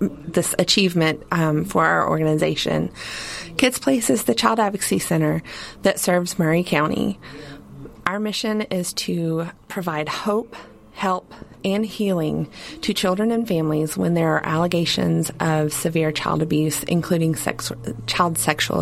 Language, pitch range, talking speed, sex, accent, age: English, 155-180 Hz, 135 wpm, female, American, 30-49